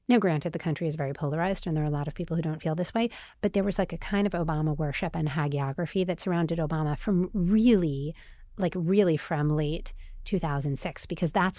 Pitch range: 155-185 Hz